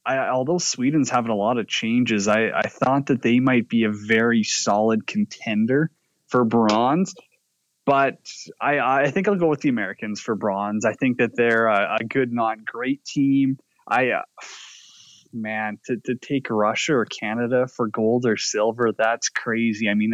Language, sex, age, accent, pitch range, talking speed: English, male, 20-39, American, 110-135 Hz, 175 wpm